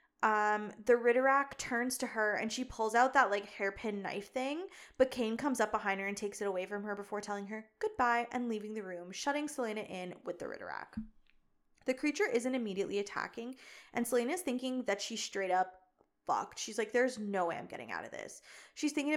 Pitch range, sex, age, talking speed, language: 205-260 Hz, female, 20-39, 205 wpm, English